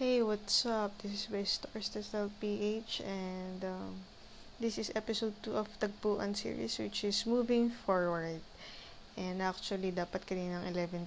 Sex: female